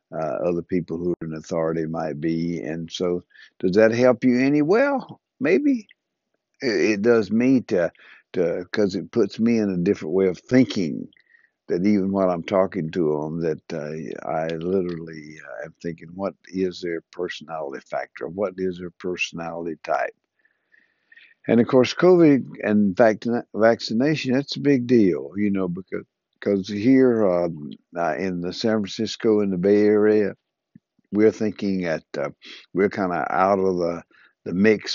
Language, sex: English, male